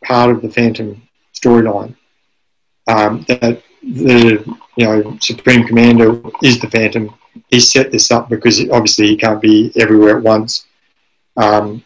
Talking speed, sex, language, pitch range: 140 wpm, male, English, 110-120 Hz